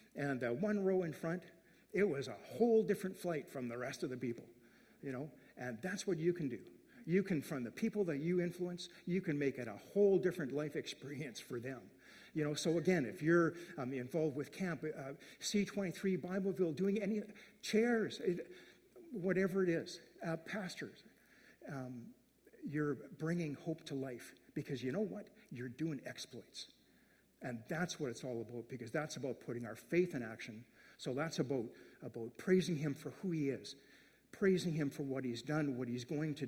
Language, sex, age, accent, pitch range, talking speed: English, male, 50-69, American, 125-185 Hz, 185 wpm